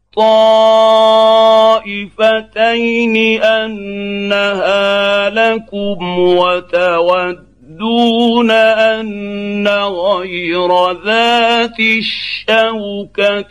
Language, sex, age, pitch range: Arabic, male, 50-69, 180-225 Hz